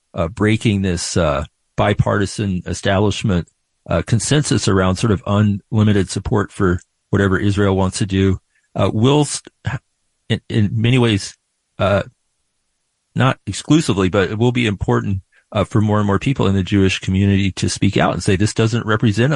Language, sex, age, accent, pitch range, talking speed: English, male, 40-59, American, 95-120 Hz, 160 wpm